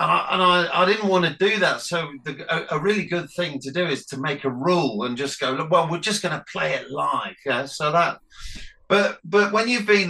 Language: English